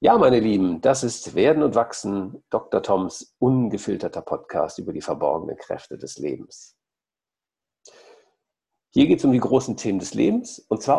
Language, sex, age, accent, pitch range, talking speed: German, male, 50-69, German, 115-185 Hz, 160 wpm